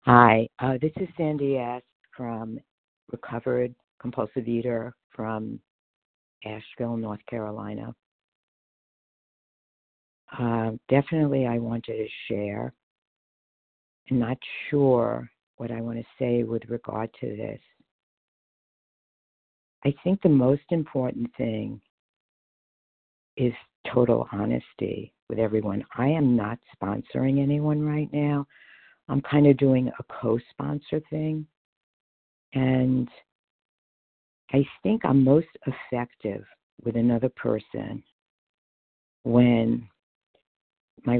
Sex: female